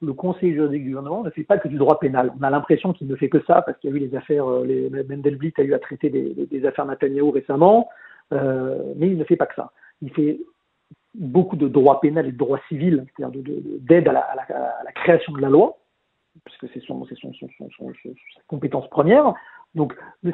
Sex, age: male, 40-59